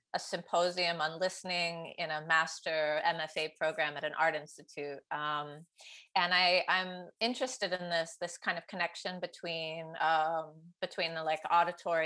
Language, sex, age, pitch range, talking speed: English, female, 30-49, 155-185 Hz, 150 wpm